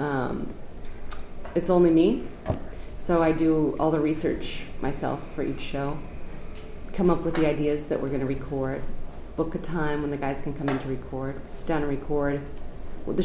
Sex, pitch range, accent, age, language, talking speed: female, 140-170 Hz, American, 30-49, English, 180 wpm